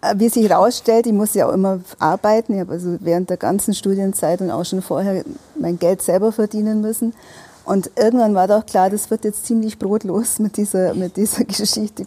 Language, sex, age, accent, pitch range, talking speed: German, female, 40-59, German, 180-215 Hz, 200 wpm